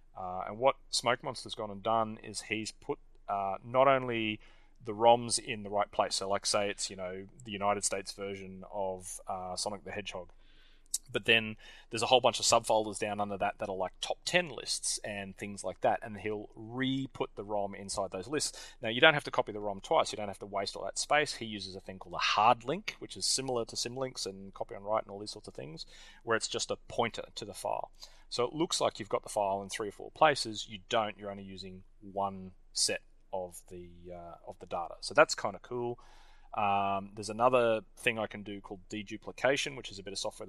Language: English